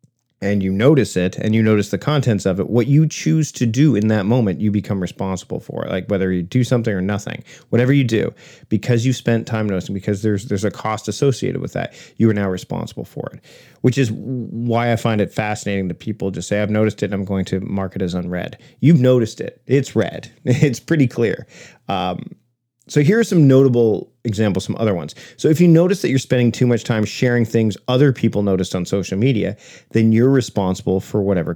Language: English